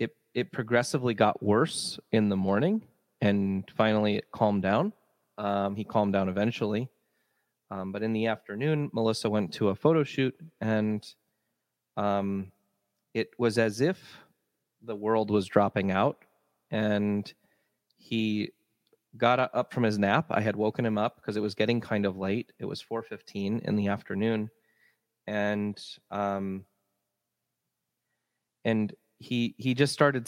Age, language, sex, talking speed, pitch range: 30-49, English, male, 140 wpm, 100-115 Hz